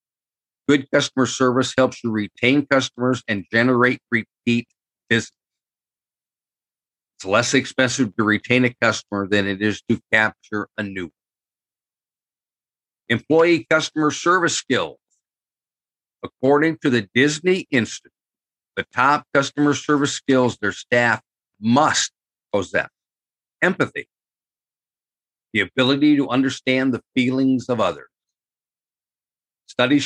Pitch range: 115-140 Hz